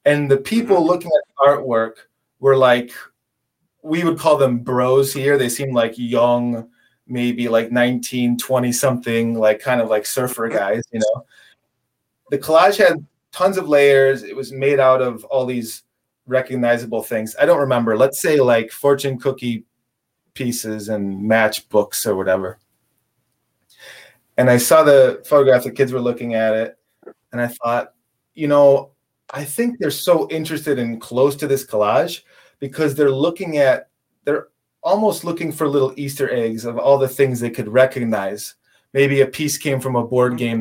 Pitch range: 115-140 Hz